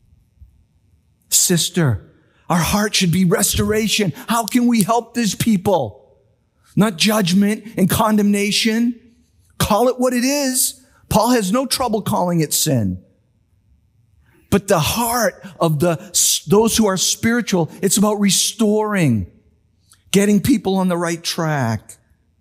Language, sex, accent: English, male, American